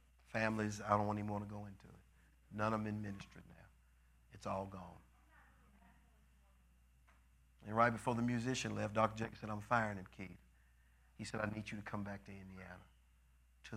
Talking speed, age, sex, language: 185 wpm, 50-69, male, English